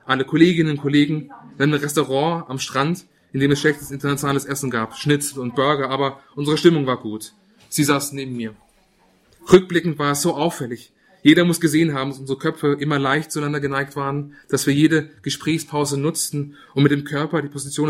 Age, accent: 30-49, German